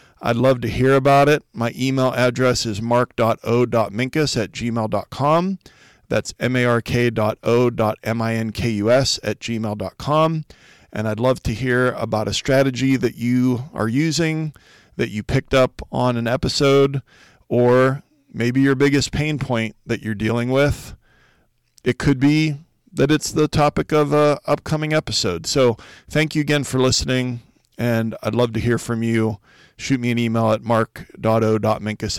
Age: 40-59